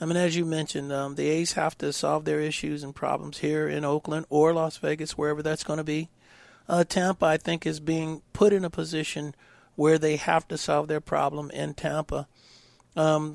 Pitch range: 150-165 Hz